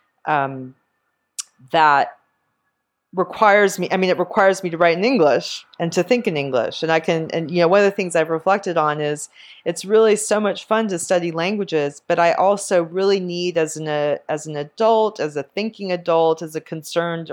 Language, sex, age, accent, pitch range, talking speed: English, female, 30-49, American, 140-170 Hz, 200 wpm